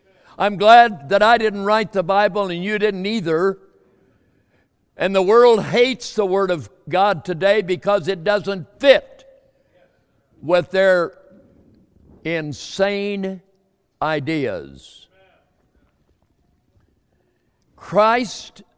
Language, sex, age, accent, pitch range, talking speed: English, male, 60-79, American, 160-200 Hz, 95 wpm